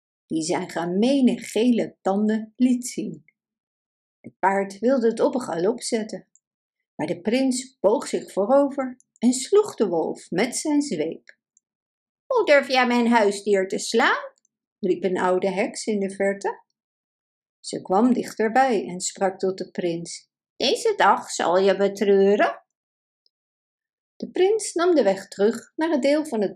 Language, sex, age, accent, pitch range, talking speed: Dutch, female, 50-69, Dutch, 195-290 Hz, 150 wpm